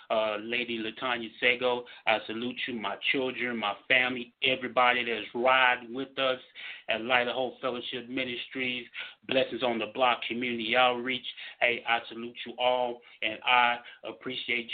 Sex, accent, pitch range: male, American, 120-135 Hz